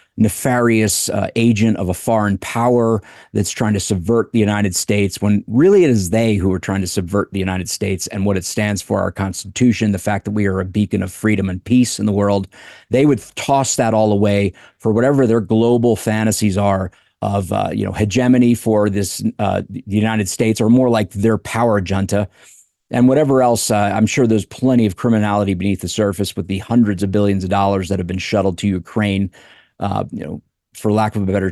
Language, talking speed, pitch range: English, 210 wpm, 95-110 Hz